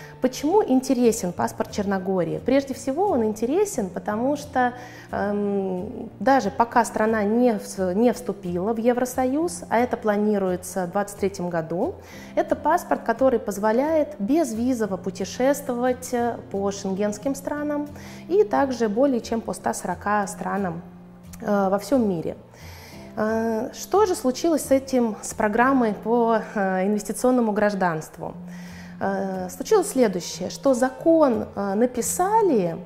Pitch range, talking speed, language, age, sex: 200-265 Hz, 115 wpm, Russian, 20-39, female